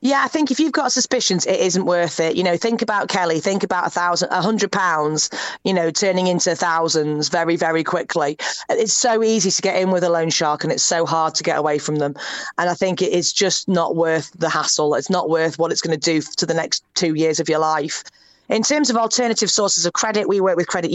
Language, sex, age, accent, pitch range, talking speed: English, female, 30-49, British, 160-195 Hz, 250 wpm